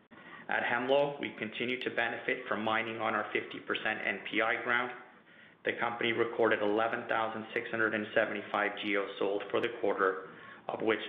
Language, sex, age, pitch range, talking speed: English, male, 30-49, 105-120 Hz, 130 wpm